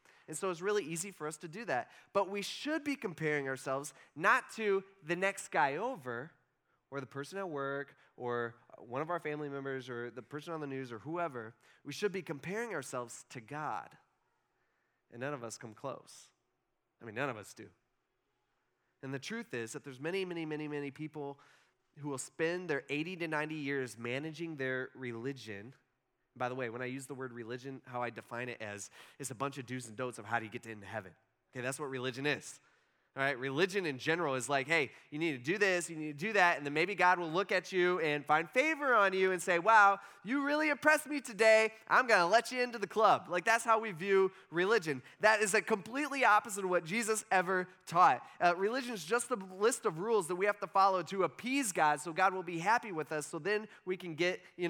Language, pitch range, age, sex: English, 140-205 Hz, 20-39, male